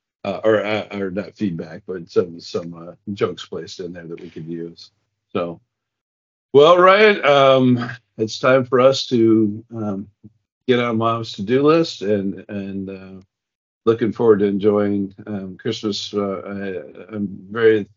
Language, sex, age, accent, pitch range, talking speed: English, male, 50-69, American, 95-110 Hz, 155 wpm